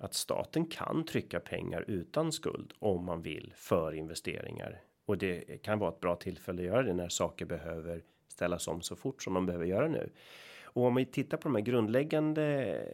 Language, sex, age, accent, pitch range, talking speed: Swedish, male, 30-49, native, 90-120 Hz, 195 wpm